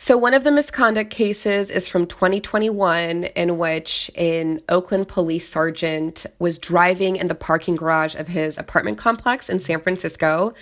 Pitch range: 160-185 Hz